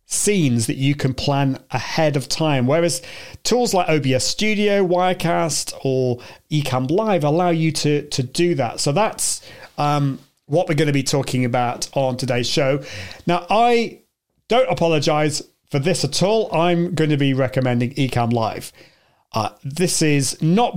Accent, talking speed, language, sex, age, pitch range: British, 160 wpm, English, male, 40-59, 130-175 Hz